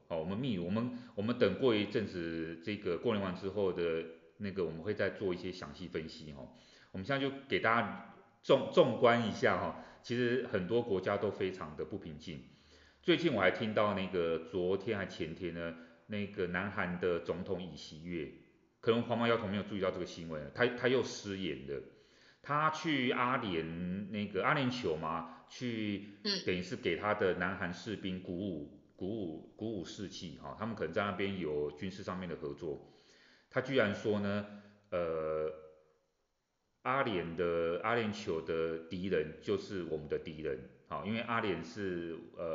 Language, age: Chinese, 30-49